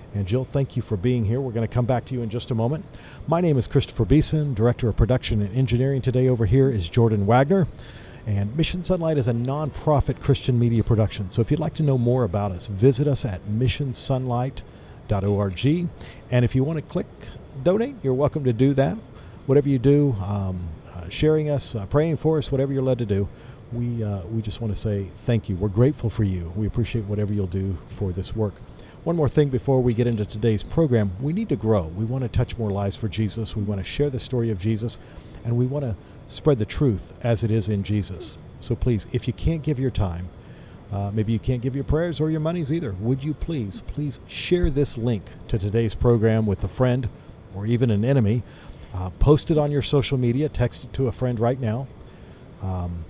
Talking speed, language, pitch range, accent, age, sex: 225 wpm, English, 105-135 Hz, American, 50-69, male